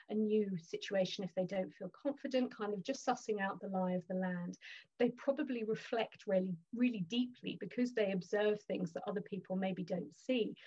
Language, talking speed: English, 190 wpm